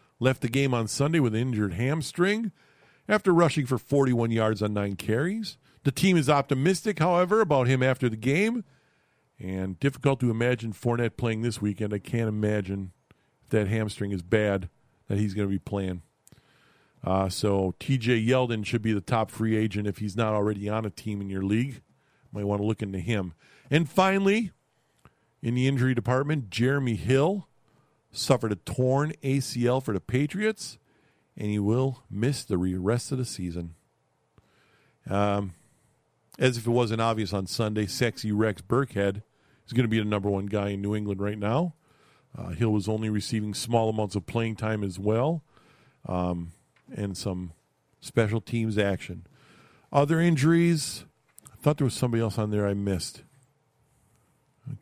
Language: English